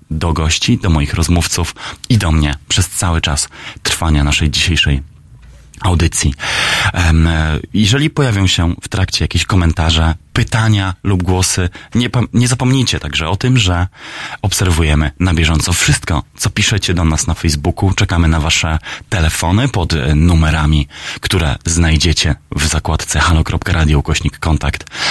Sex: male